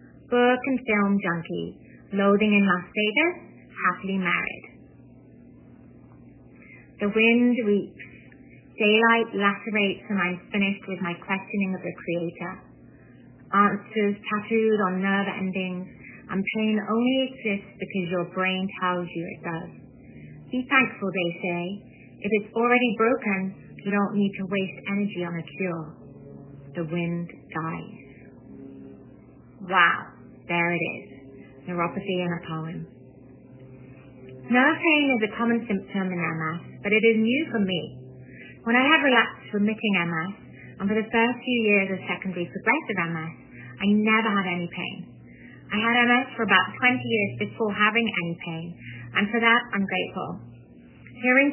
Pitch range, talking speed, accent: 175-220 Hz, 140 wpm, British